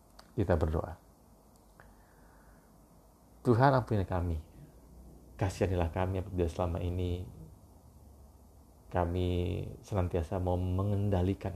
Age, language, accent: 30-49, Indonesian, native